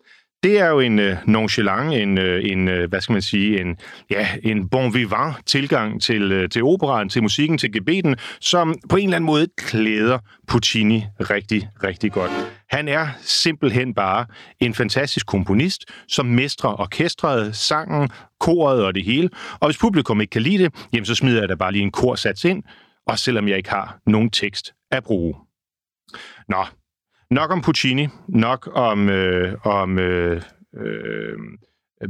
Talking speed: 160 wpm